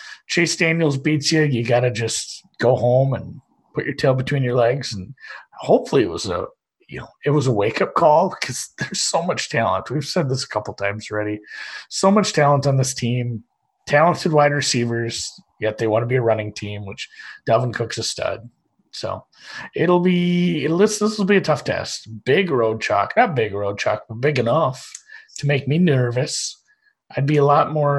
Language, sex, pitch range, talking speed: English, male, 115-155 Hz, 195 wpm